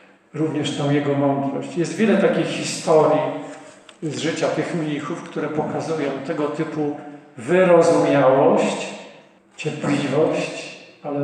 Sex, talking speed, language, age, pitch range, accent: male, 100 wpm, Polish, 50-69, 135-155 Hz, native